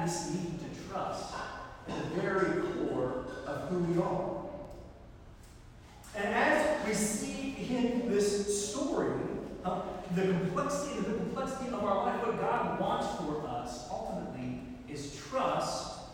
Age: 40-59